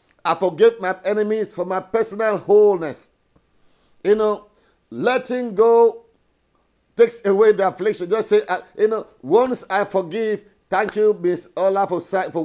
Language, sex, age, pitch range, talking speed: English, male, 50-69, 165-210 Hz, 145 wpm